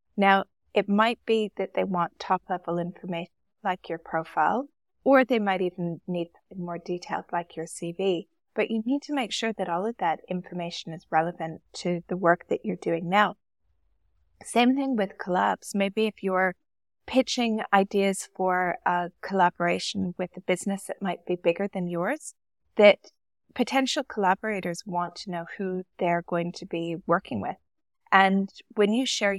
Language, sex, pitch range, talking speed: English, female, 175-225 Hz, 165 wpm